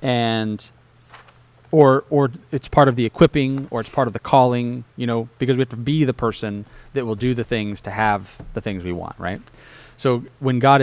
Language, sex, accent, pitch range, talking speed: English, male, American, 115-135 Hz, 210 wpm